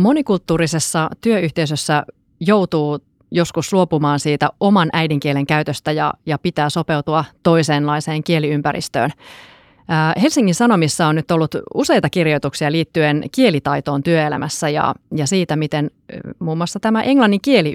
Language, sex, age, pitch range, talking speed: Finnish, female, 30-49, 150-180 Hz, 120 wpm